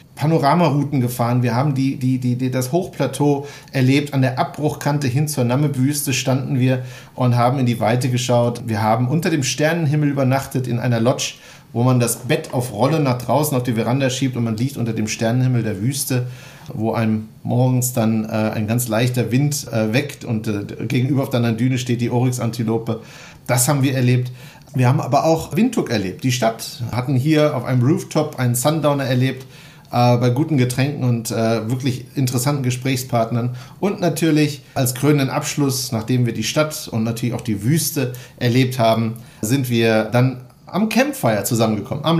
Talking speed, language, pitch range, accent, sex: 180 wpm, German, 120-145 Hz, German, male